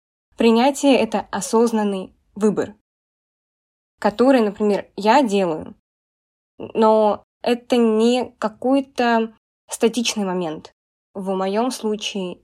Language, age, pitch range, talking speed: Russian, 20-39, 195-225 Hz, 85 wpm